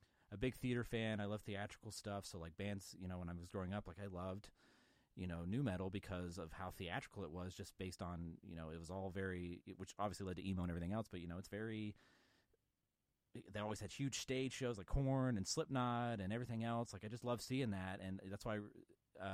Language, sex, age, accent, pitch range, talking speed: English, male, 30-49, American, 85-105 Hz, 235 wpm